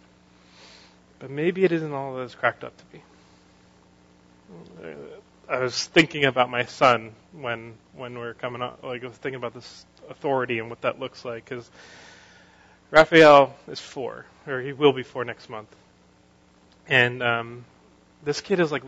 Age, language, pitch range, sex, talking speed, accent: 30-49, English, 120-145 Hz, male, 165 wpm, American